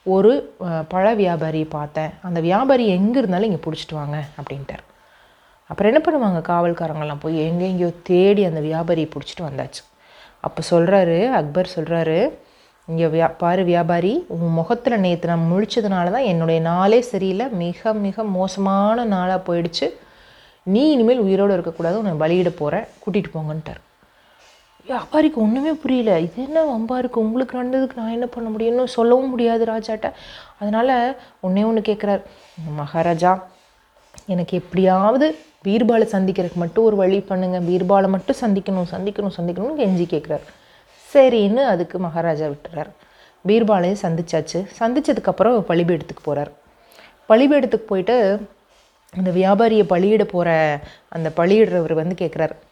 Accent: native